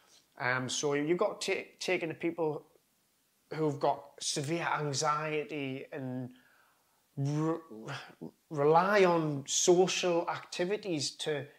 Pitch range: 130-165 Hz